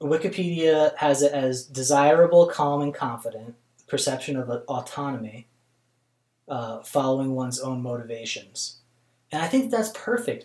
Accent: American